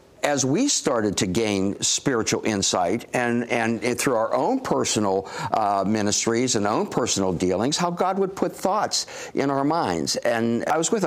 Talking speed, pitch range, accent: 175 wpm, 105-155 Hz, American